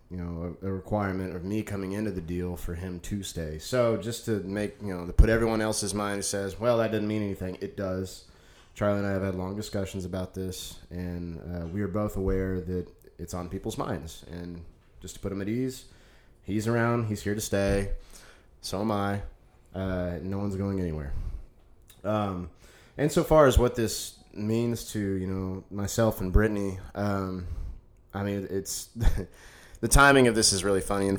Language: English